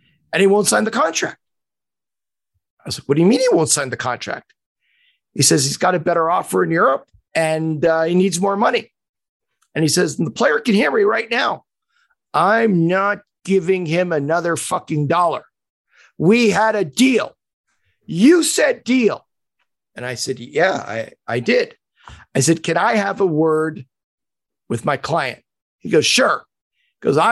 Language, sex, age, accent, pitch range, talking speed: English, male, 50-69, American, 135-195 Hz, 170 wpm